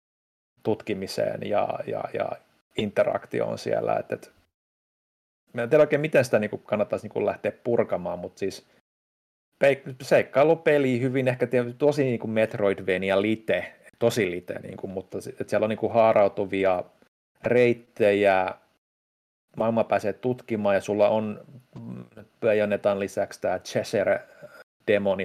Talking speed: 120 wpm